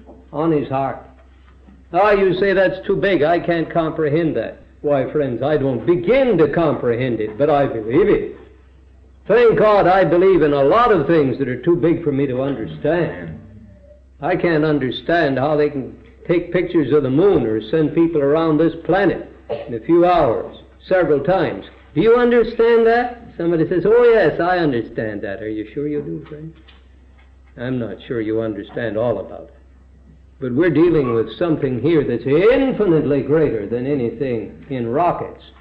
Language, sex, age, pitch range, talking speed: English, male, 60-79, 115-180 Hz, 175 wpm